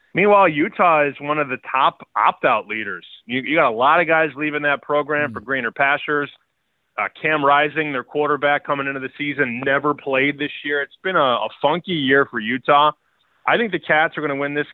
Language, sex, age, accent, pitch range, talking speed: English, male, 20-39, American, 130-150 Hz, 210 wpm